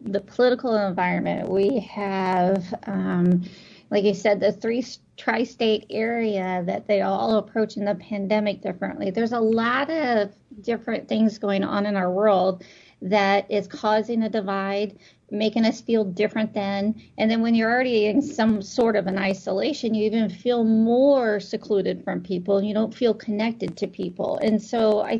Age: 40-59